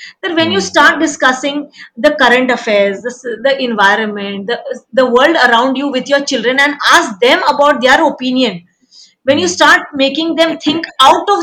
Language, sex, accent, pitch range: Marathi, female, native, 235-300 Hz